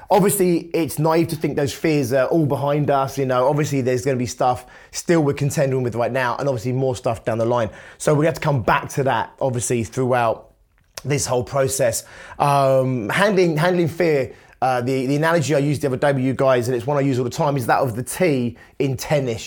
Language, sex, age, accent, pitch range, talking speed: English, male, 20-39, British, 130-160 Hz, 230 wpm